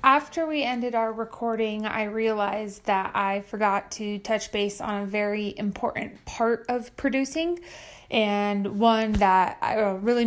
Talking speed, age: 140 wpm, 30-49